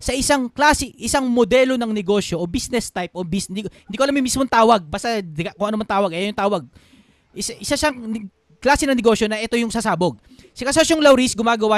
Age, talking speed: 20-39, 220 wpm